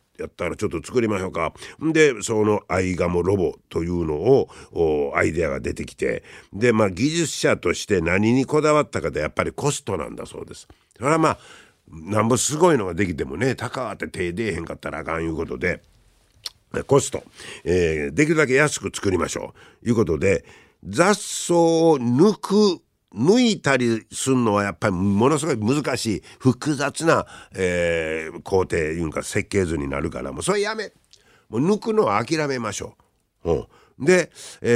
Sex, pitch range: male, 105-160 Hz